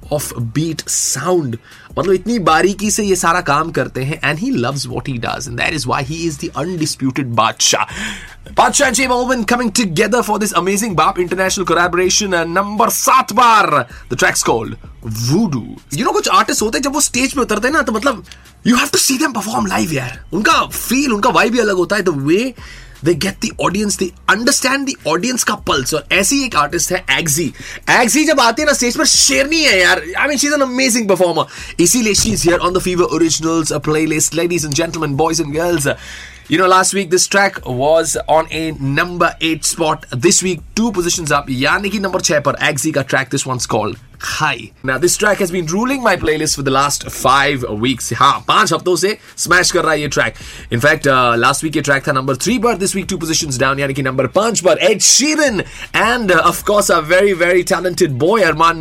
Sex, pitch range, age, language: male, 150-215 Hz, 20-39, Hindi